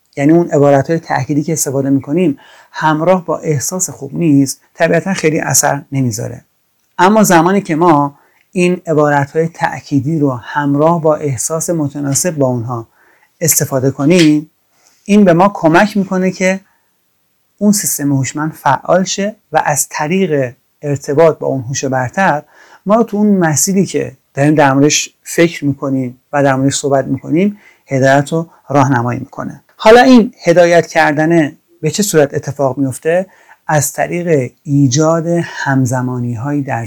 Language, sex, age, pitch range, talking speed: Persian, male, 30-49, 135-165 Hz, 135 wpm